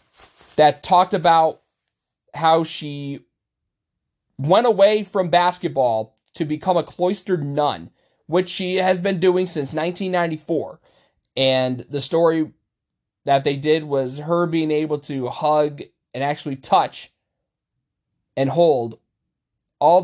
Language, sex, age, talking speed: English, male, 30-49, 115 wpm